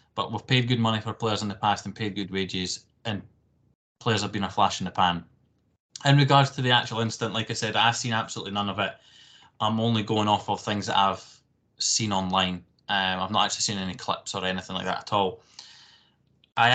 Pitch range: 100-120 Hz